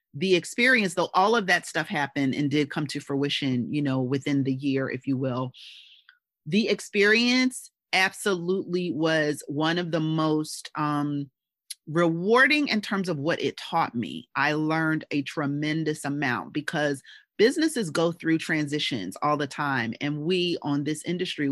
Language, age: English, 30-49